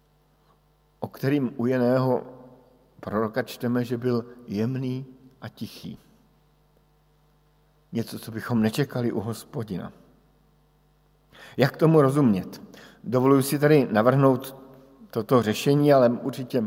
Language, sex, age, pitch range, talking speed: Slovak, male, 50-69, 115-145 Hz, 100 wpm